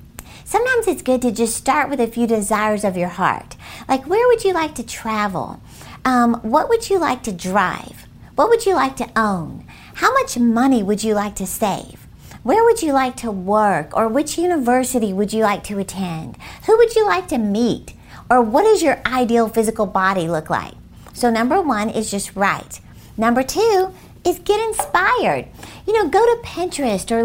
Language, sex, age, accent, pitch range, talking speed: English, female, 50-69, American, 205-275 Hz, 190 wpm